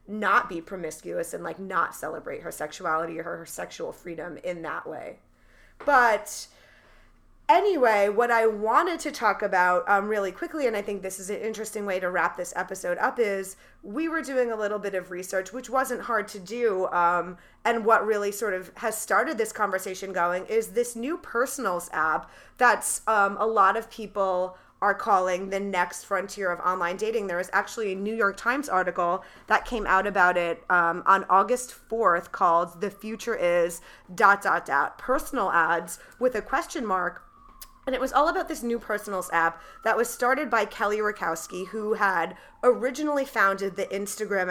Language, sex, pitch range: English, female, 185-235 Hz